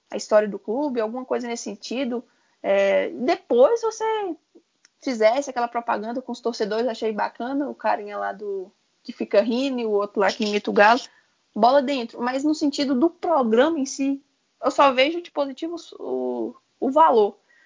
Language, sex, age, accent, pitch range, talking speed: Portuguese, female, 20-39, Brazilian, 220-285 Hz, 170 wpm